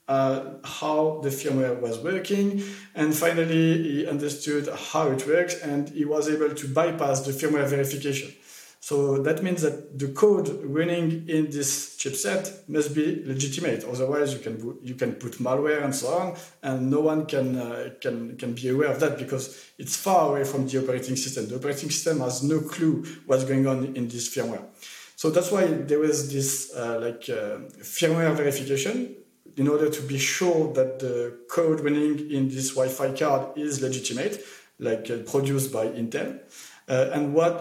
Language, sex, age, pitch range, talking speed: English, male, 40-59, 135-160 Hz, 175 wpm